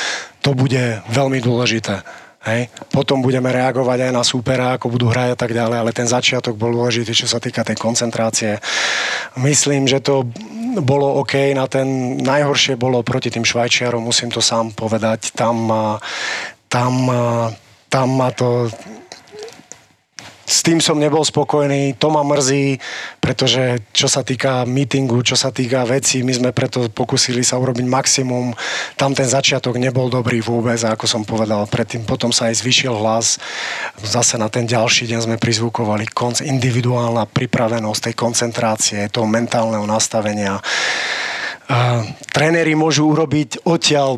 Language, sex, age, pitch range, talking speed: Slovak, male, 30-49, 115-135 Hz, 140 wpm